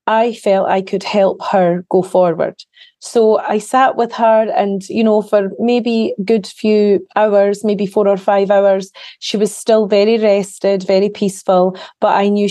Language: English